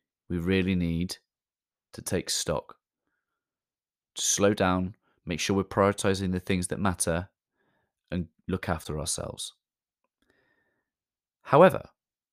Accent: British